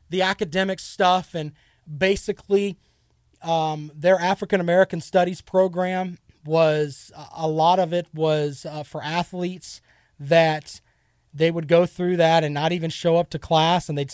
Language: English